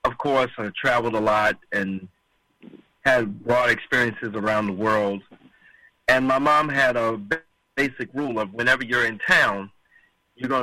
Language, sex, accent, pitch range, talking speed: English, male, American, 110-135 Hz, 150 wpm